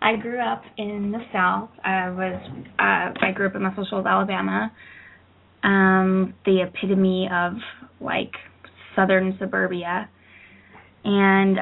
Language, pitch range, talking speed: English, 180-205 Hz, 125 wpm